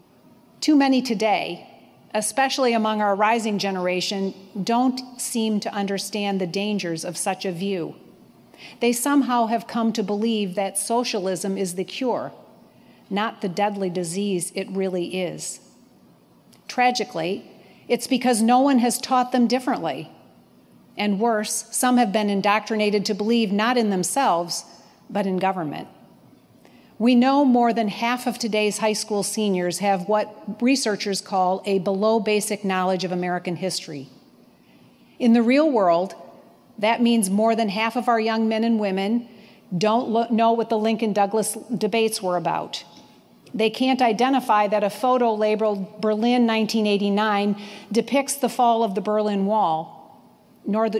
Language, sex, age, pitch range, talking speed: English, female, 40-59, 195-230 Hz, 140 wpm